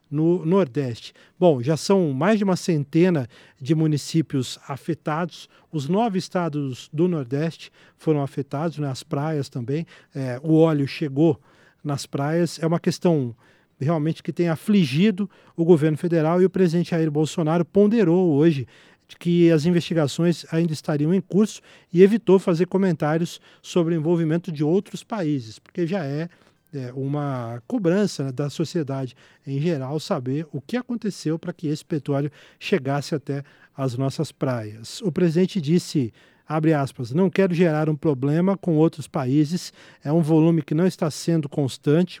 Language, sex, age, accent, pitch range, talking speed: Portuguese, male, 40-59, Brazilian, 145-175 Hz, 150 wpm